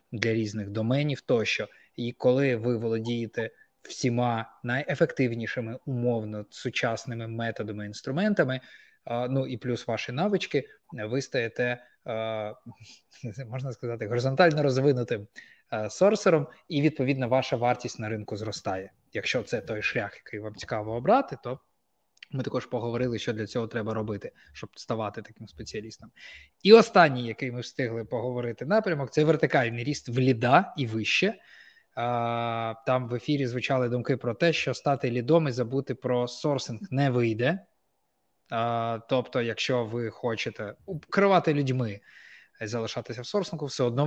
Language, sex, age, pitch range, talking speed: Ukrainian, male, 20-39, 115-135 Hz, 130 wpm